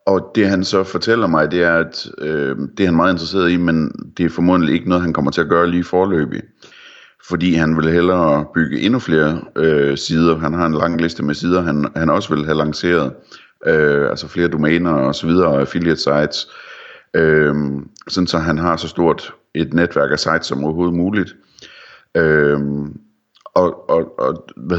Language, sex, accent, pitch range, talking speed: Danish, male, native, 75-85 Hz, 190 wpm